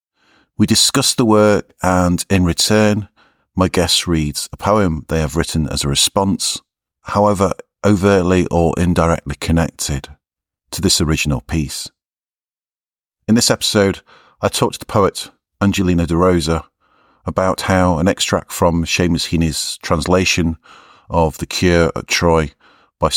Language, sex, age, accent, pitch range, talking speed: English, male, 40-59, British, 85-105 Hz, 135 wpm